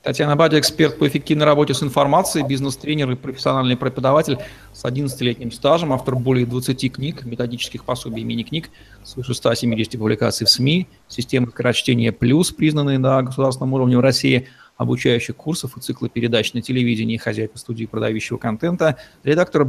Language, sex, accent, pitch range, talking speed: Russian, male, native, 120-145 Hz, 150 wpm